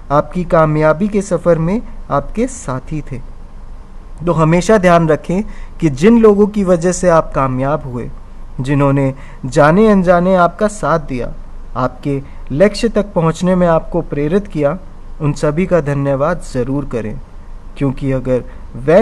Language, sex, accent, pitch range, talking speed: Hindi, male, native, 135-190 Hz, 140 wpm